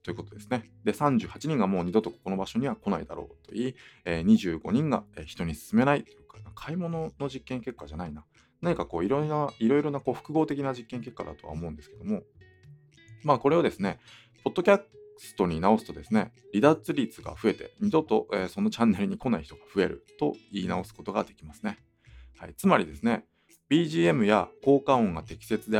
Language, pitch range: Japanese, 95-140 Hz